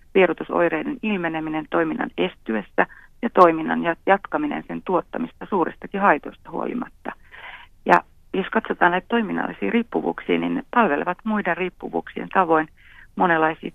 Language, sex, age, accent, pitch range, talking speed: Finnish, female, 40-59, native, 160-190 Hz, 110 wpm